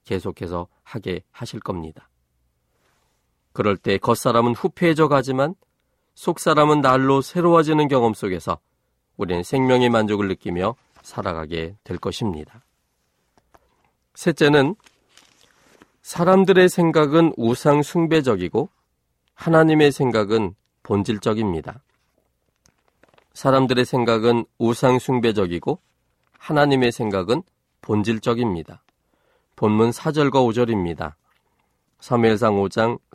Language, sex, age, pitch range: Korean, male, 40-59, 100-135 Hz